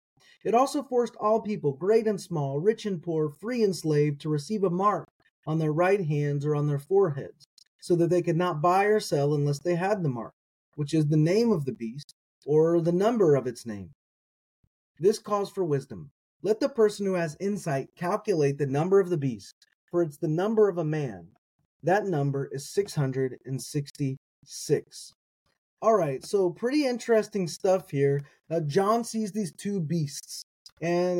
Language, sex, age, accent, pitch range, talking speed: English, male, 30-49, American, 145-200 Hz, 185 wpm